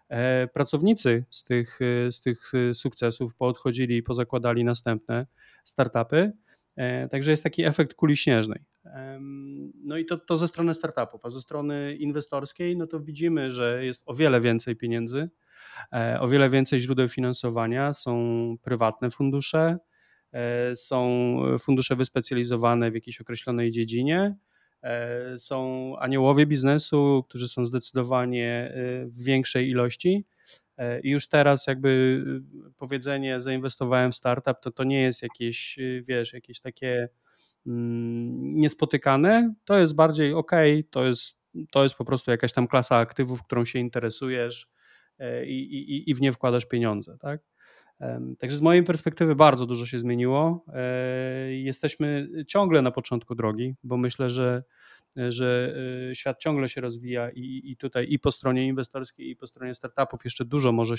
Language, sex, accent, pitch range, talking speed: Polish, male, native, 120-145 Hz, 135 wpm